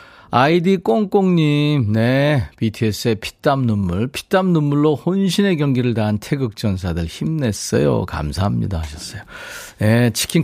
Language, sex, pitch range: Korean, male, 105-155 Hz